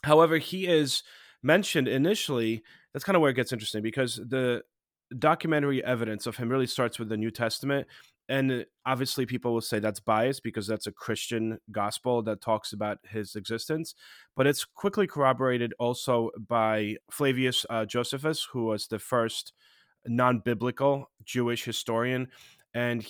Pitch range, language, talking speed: 110-130 Hz, English, 150 wpm